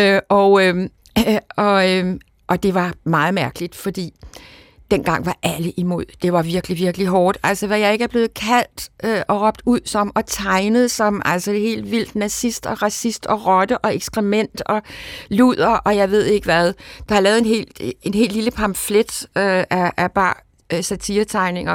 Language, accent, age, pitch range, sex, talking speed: Danish, native, 60-79, 180-215 Hz, female, 180 wpm